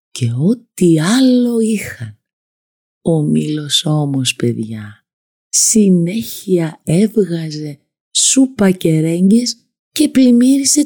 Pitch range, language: 145-220 Hz, Greek